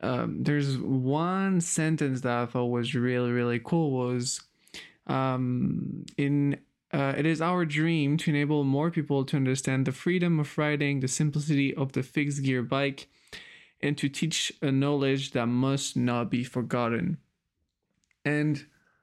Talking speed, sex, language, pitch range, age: 150 wpm, male, English, 125-150 Hz, 20-39